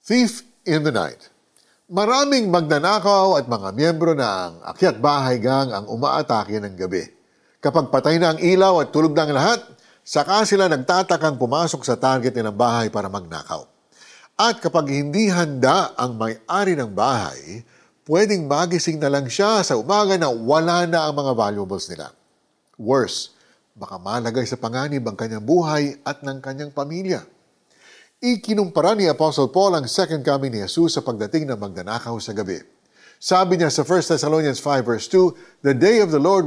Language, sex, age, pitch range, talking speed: Filipino, male, 50-69, 135-185 Hz, 165 wpm